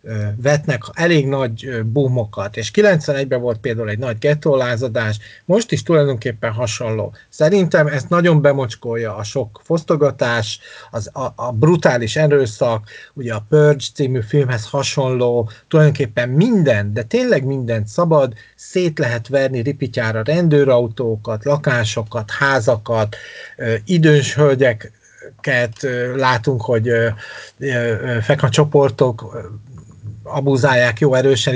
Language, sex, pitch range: Hungarian, male, 120-150 Hz